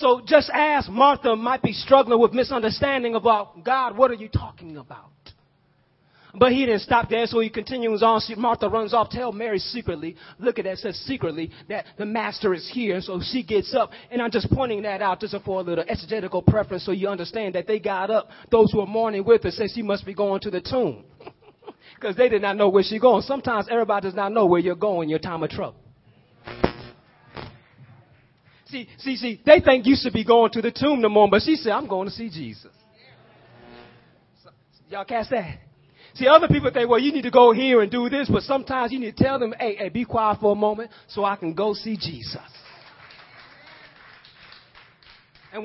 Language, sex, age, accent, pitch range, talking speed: English, male, 30-49, American, 175-235 Hz, 210 wpm